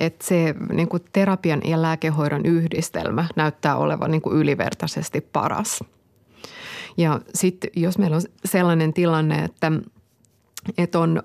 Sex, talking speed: female, 115 wpm